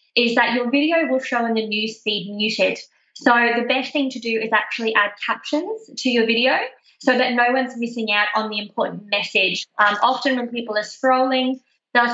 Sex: female